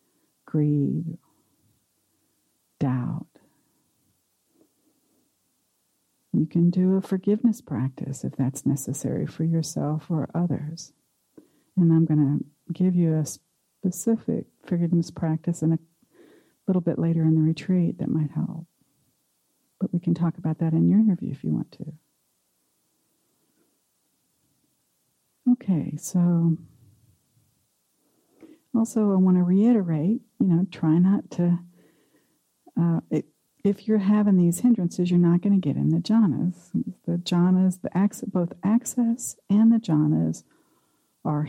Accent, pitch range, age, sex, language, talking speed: American, 155-190 Hz, 60-79, female, English, 120 wpm